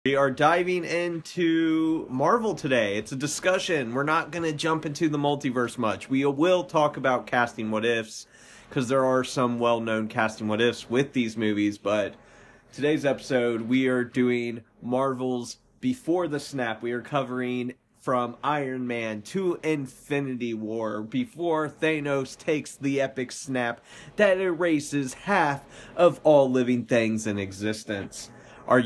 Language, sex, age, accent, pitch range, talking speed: English, male, 30-49, American, 110-145 Hz, 145 wpm